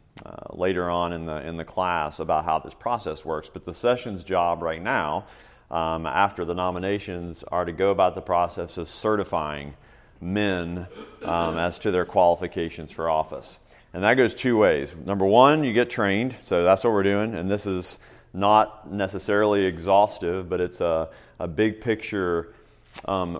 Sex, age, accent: male, 40-59, American